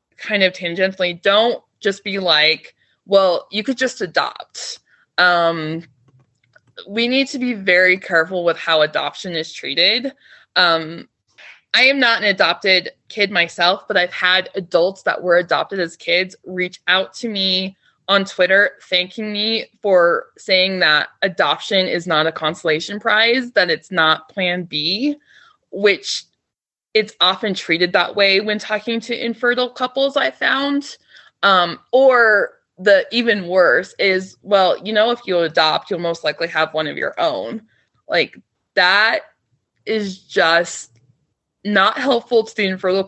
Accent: American